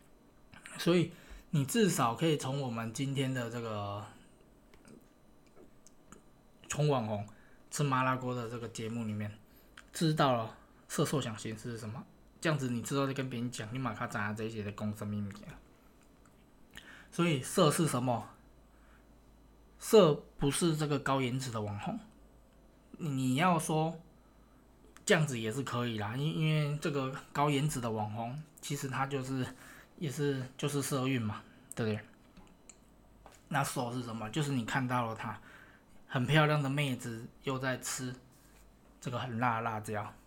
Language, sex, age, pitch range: Chinese, male, 20-39, 115-145 Hz